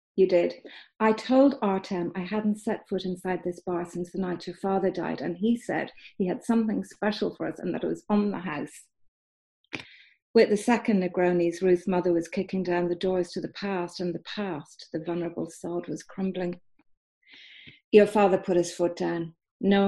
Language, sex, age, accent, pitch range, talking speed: English, female, 40-59, British, 175-205 Hz, 190 wpm